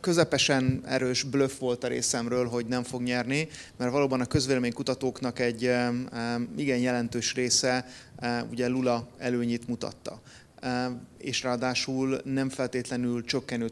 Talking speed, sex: 125 wpm, male